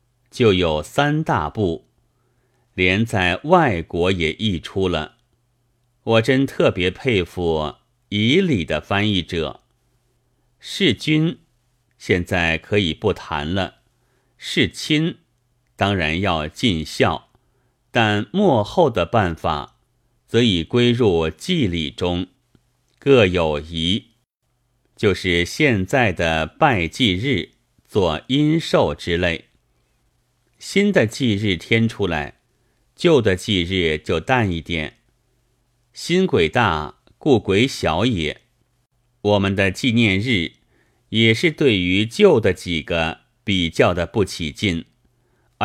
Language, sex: Chinese, male